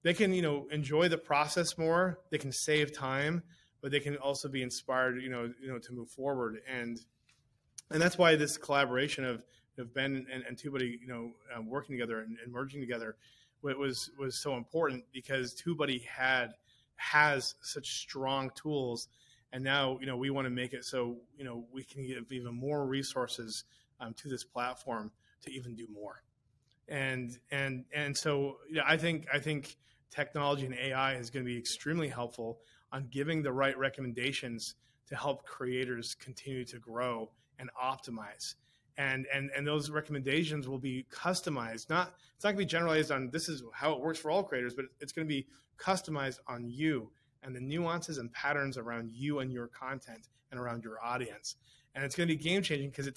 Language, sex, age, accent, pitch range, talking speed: English, male, 30-49, American, 125-145 Hz, 190 wpm